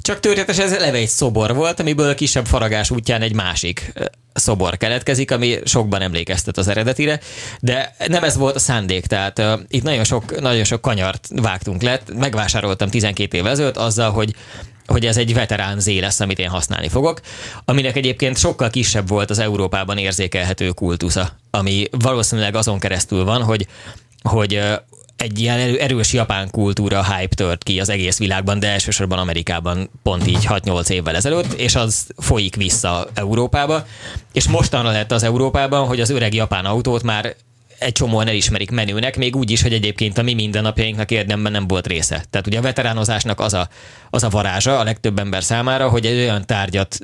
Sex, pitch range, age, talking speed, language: male, 100-125 Hz, 20-39, 175 wpm, English